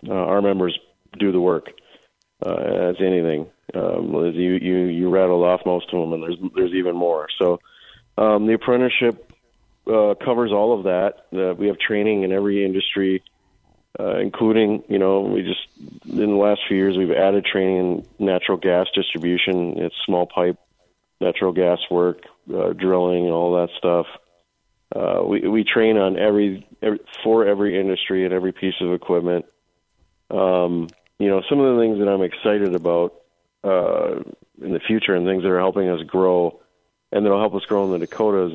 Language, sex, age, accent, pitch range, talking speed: English, male, 40-59, American, 90-100 Hz, 180 wpm